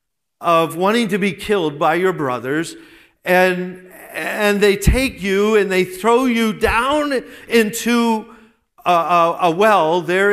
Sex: male